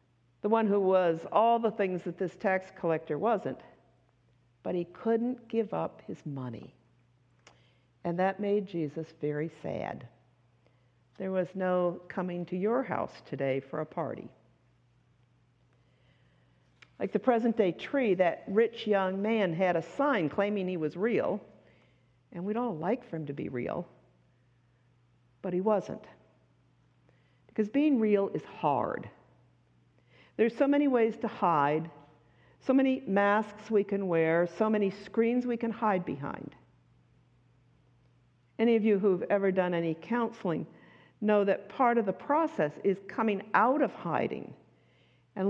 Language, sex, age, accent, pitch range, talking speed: English, female, 60-79, American, 145-225 Hz, 140 wpm